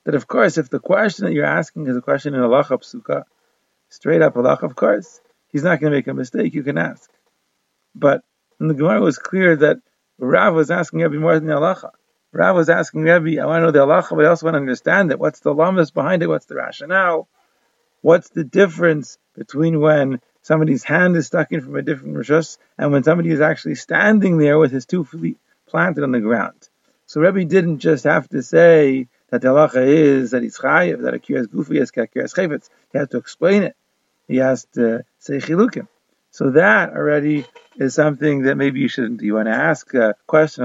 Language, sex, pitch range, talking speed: English, male, 140-170 Hz, 215 wpm